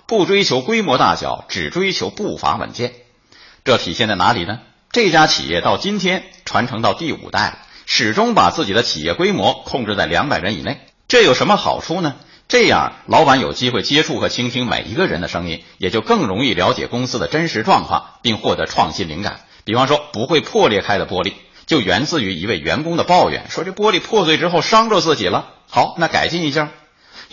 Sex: male